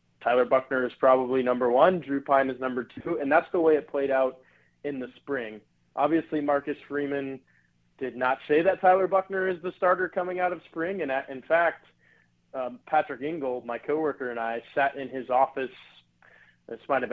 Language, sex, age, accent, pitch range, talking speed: English, male, 20-39, American, 125-150 Hz, 185 wpm